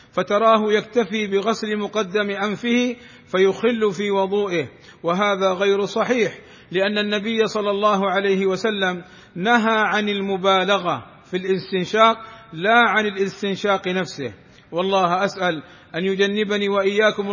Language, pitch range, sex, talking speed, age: Arabic, 185-210 Hz, male, 105 wpm, 50-69